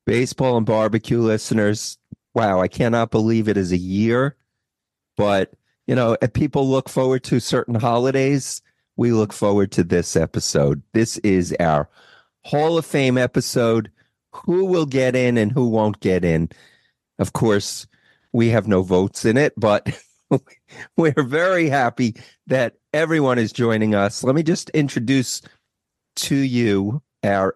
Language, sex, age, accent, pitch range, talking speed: English, male, 40-59, American, 105-135 Hz, 150 wpm